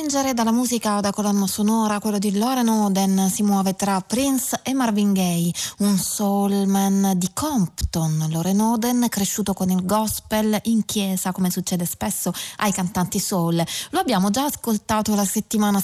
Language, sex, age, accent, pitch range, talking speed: Italian, female, 20-39, native, 175-215 Hz, 160 wpm